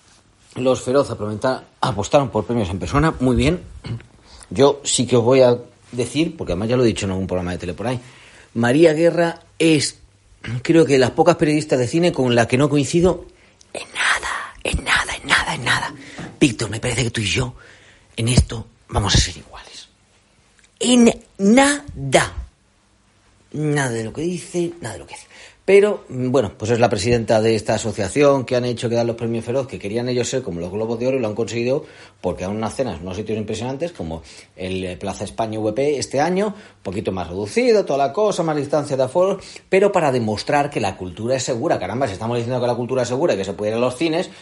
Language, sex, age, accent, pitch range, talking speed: Spanish, male, 40-59, Spanish, 105-145 Hz, 210 wpm